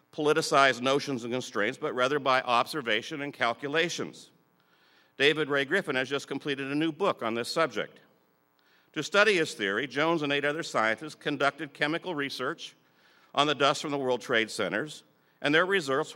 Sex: male